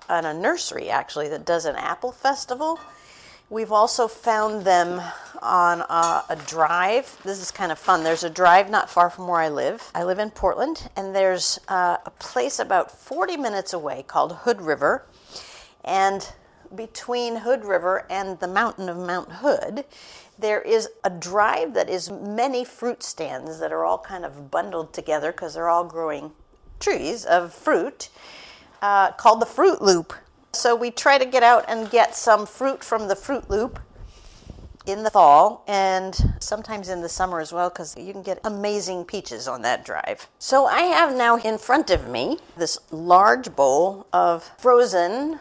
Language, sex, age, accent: English, female, 50-69, American